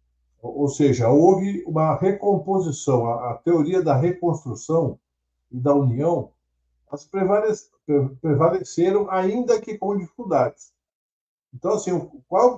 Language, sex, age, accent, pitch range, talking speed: Portuguese, male, 60-79, Brazilian, 130-185 Hz, 100 wpm